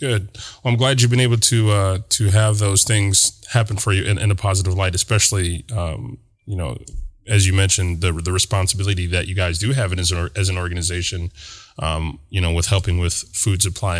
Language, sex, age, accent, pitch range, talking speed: English, male, 20-39, American, 95-115 Hz, 220 wpm